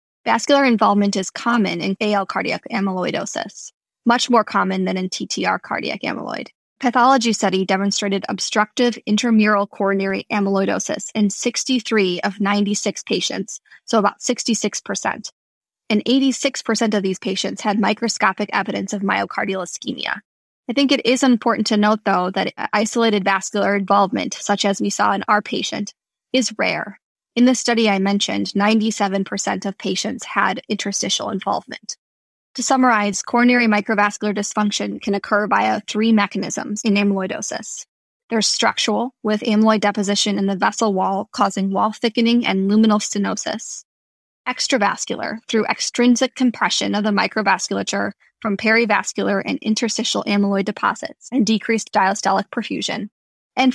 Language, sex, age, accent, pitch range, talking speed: English, female, 10-29, American, 200-230 Hz, 135 wpm